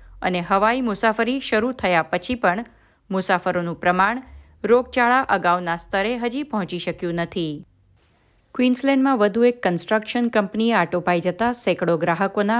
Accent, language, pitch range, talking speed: native, Gujarati, 170-225 Hz, 110 wpm